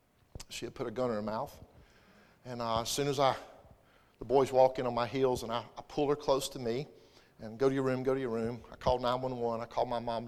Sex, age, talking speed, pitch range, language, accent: male, 50-69, 270 wpm, 115-150 Hz, English, American